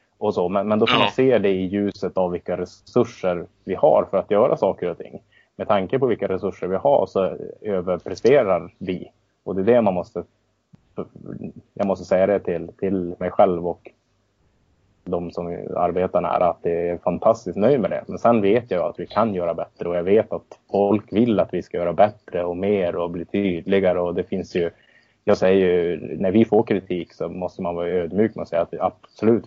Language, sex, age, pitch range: Swedish, male, 20-39, 90-105 Hz